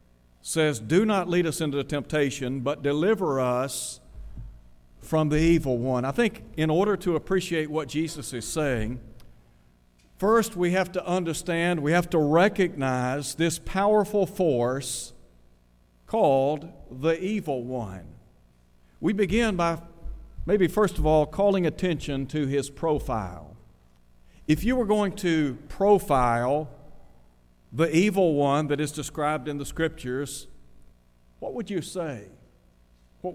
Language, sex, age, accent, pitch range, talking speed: English, male, 50-69, American, 110-170 Hz, 130 wpm